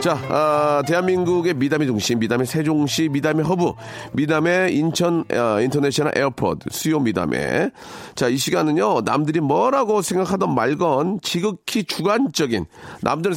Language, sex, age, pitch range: Korean, male, 40-59, 130-180 Hz